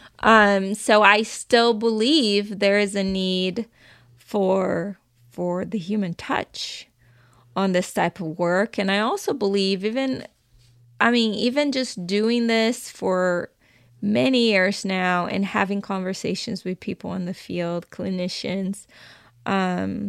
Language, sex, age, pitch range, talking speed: English, female, 20-39, 180-215 Hz, 130 wpm